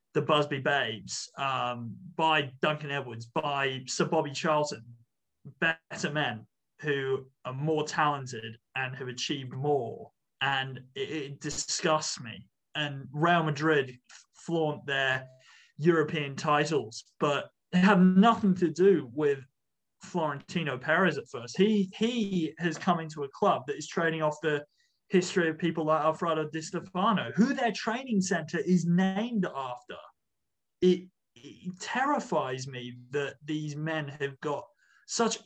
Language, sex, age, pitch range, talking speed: English, male, 30-49, 135-170 Hz, 135 wpm